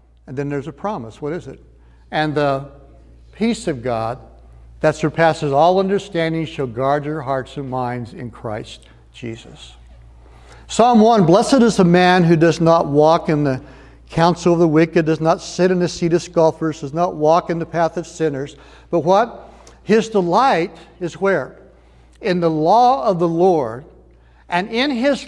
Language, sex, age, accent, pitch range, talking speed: English, male, 60-79, American, 130-180 Hz, 175 wpm